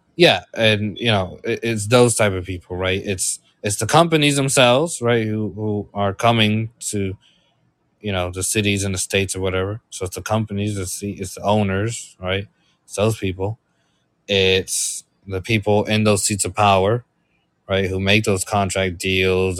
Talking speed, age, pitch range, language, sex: 170 wpm, 20-39, 95-115 Hz, English, male